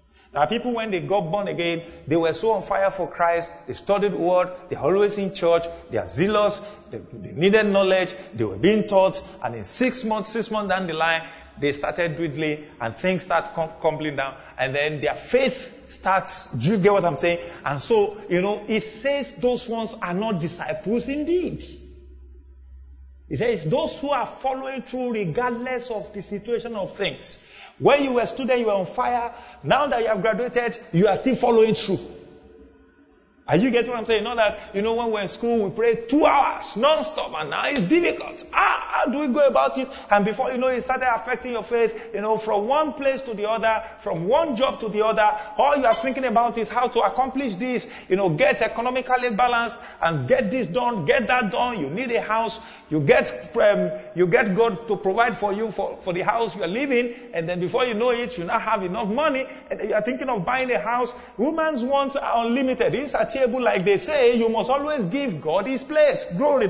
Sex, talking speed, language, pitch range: male, 215 wpm, English, 180-245 Hz